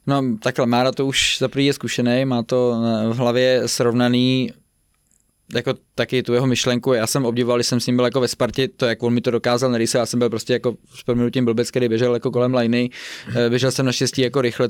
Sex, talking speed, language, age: male, 220 wpm, Czech, 20-39